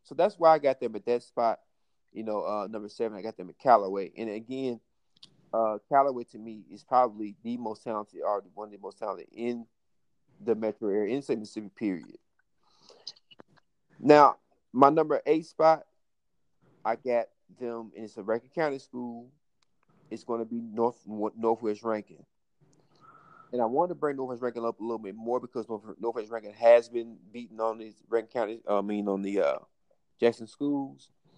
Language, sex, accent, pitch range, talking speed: English, male, American, 110-135 Hz, 175 wpm